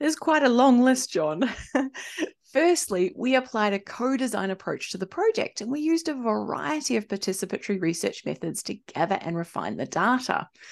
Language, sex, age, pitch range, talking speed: English, female, 30-49, 195-275 Hz, 170 wpm